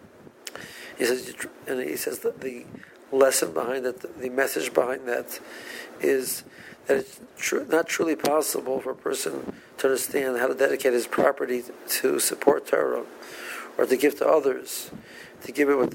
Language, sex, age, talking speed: English, male, 50-69, 160 wpm